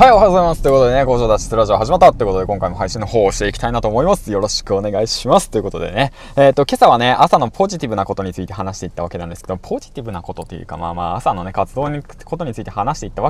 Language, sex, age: Japanese, male, 20-39